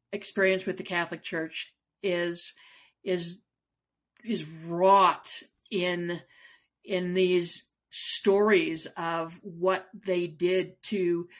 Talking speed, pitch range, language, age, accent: 95 wpm, 180-220 Hz, English, 50-69, American